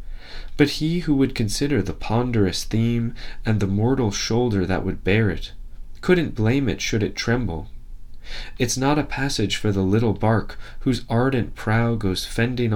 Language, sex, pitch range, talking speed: English, male, 95-125 Hz, 165 wpm